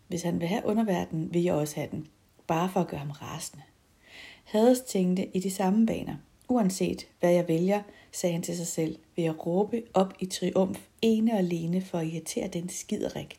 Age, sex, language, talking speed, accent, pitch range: 60-79, female, Danish, 200 wpm, native, 155-195 Hz